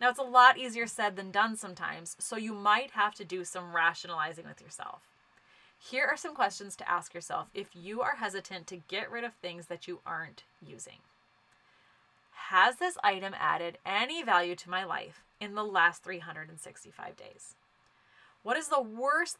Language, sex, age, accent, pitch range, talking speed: English, female, 20-39, American, 180-240 Hz, 175 wpm